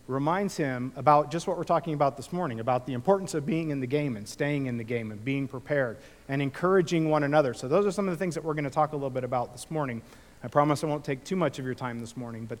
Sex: male